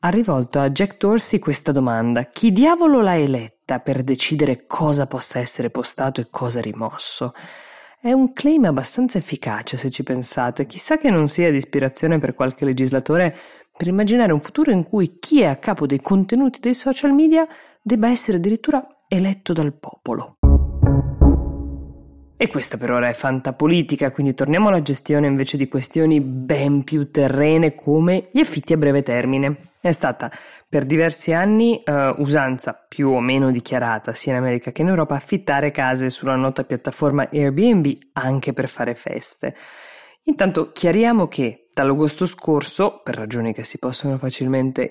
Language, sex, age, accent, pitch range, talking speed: Italian, female, 20-39, native, 130-180 Hz, 155 wpm